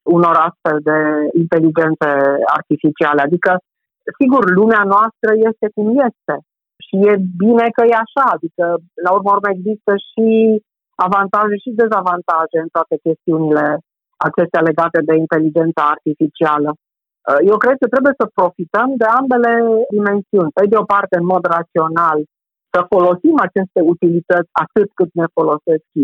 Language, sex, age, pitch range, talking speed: Romanian, female, 50-69, 160-210 Hz, 130 wpm